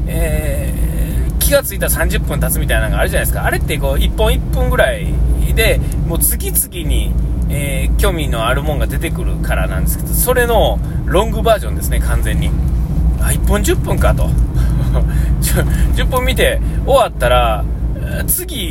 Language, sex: Japanese, male